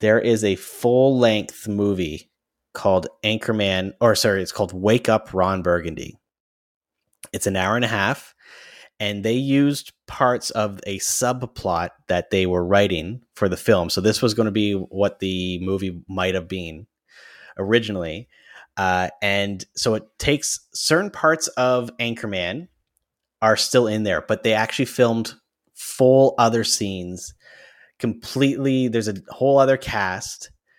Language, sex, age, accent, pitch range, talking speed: English, male, 30-49, American, 95-115 Hz, 145 wpm